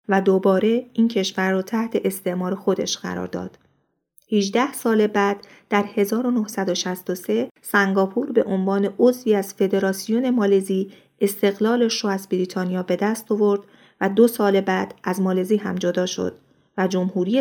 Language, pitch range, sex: Persian, 185-220 Hz, female